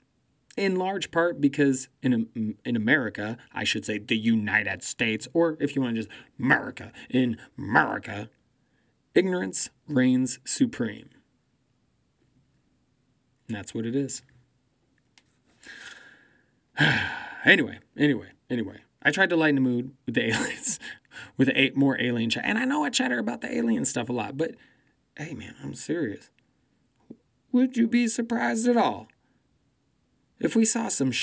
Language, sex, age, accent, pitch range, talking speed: English, male, 20-39, American, 120-165 Hz, 140 wpm